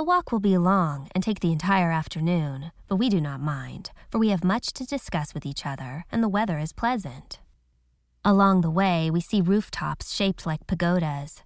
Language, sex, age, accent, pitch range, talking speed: English, female, 20-39, American, 160-200 Hz, 200 wpm